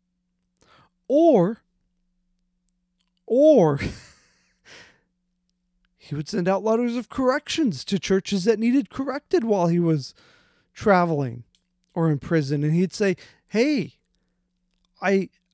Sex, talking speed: male, 100 wpm